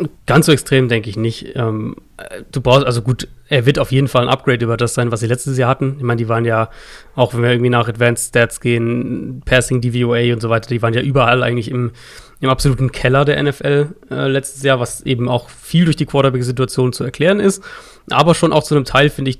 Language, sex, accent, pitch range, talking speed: German, male, German, 120-140 Hz, 235 wpm